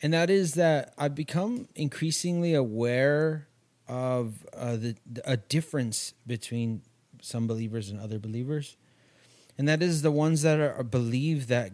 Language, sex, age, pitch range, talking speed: English, male, 30-49, 115-140 Hz, 145 wpm